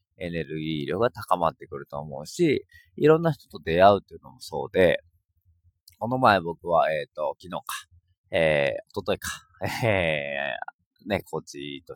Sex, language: male, Japanese